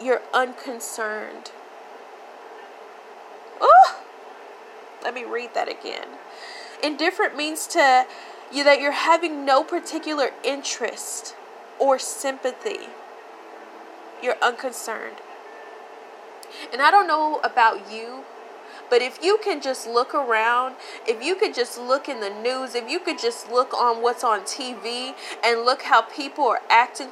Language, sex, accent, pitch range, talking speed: English, female, American, 260-365 Hz, 130 wpm